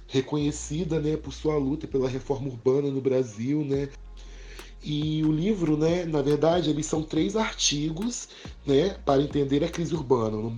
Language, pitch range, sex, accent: Portuguese, 140-175 Hz, male, Brazilian